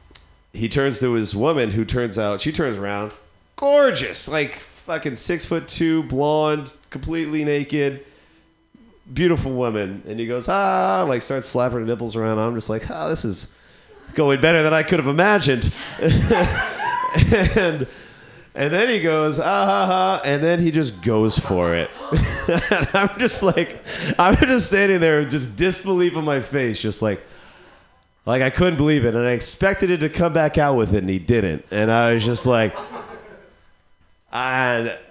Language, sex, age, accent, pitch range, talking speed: English, male, 30-49, American, 110-160 Hz, 170 wpm